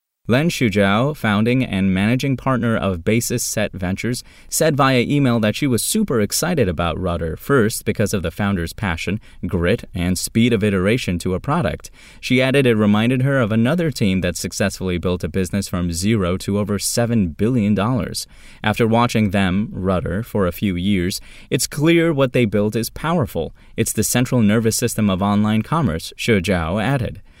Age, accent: 20-39, American